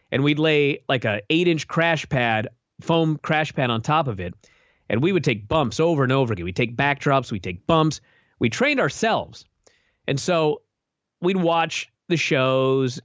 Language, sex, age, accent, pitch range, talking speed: English, male, 30-49, American, 115-160 Hz, 180 wpm